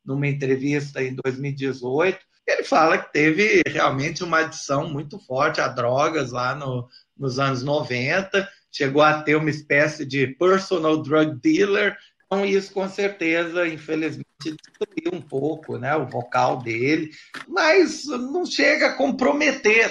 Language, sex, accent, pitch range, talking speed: Portuguese, male, Brazilian, 150-200 Hz, 140 wpm